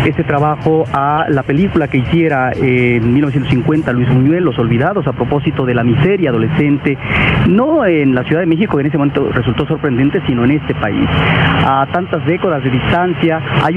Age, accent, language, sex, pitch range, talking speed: 40-59, Mexican, Spanish, male, 135-165 Hz, 185 wpm